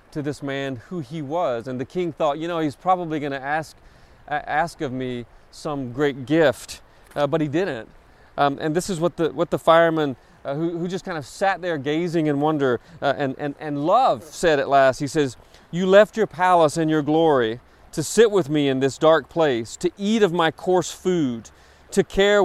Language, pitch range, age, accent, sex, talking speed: English, 125-170 Hz, 40-59, American, male, 215 wpm